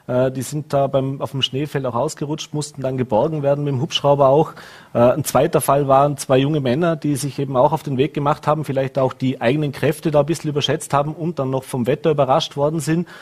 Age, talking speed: 30-49, 230 wpm